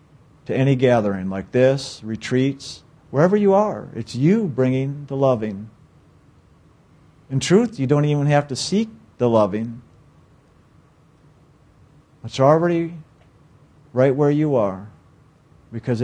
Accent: American